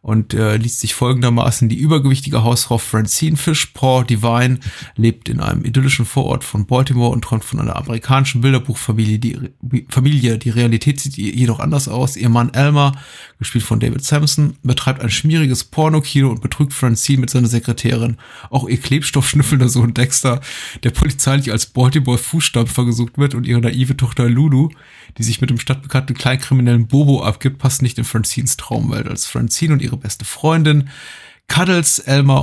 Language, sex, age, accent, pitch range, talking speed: German, male, 30-49, German, 115-140 Hz, 165 wpm